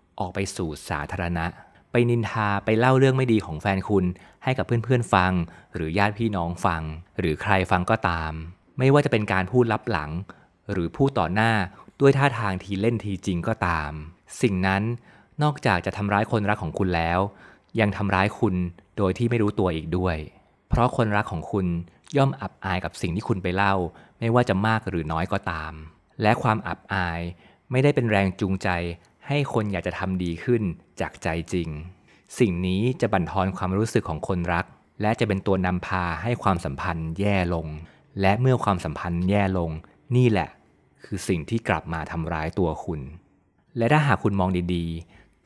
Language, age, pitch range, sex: Thai, 20-39, 90-115 Hz, male